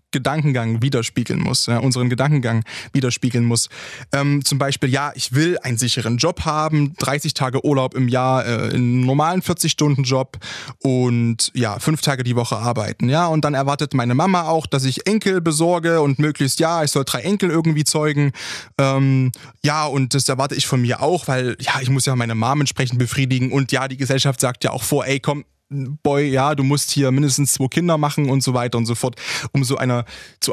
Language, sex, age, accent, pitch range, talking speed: German, male, 20-39, German, 130-155 Hz, 200 wpm